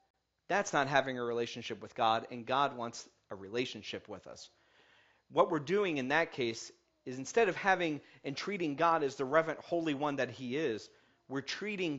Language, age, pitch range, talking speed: English, 40-59, 135-205 Hz, 185 wpm